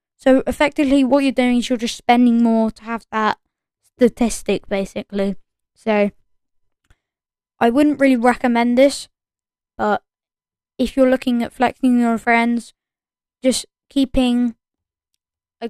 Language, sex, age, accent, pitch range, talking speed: English, female, 10-29, British, 225-260 Hz, 120 wpm